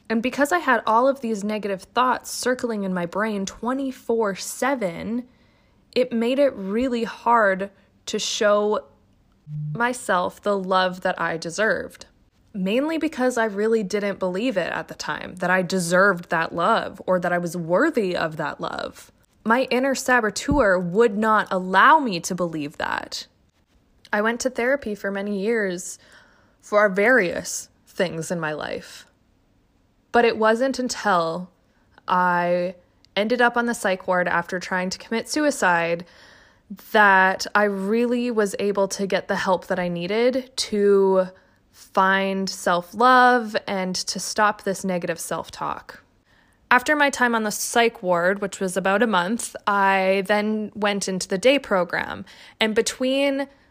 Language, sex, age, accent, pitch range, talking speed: English, female, 20-39, American, 185-235 Hz, 145 wpm